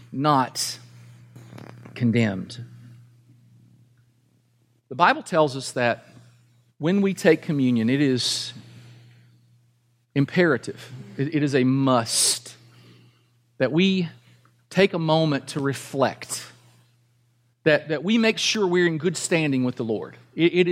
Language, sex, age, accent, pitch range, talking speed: English, male, 40-59, American, 120-165 Hz, 105 wpm